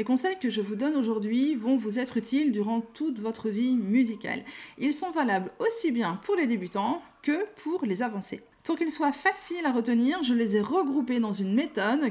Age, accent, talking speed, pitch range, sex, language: 40-59, French, 205 wpm, 215-285 Hz, female, French